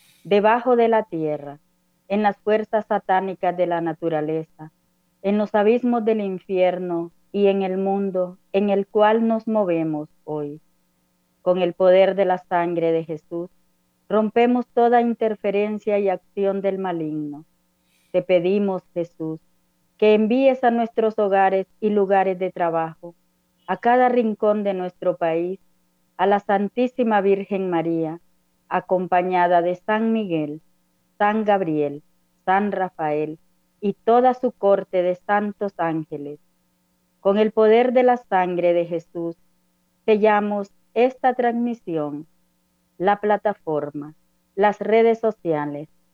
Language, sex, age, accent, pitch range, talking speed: Spanish, female, 40-59, American, 155-205 Hz, 125 wpm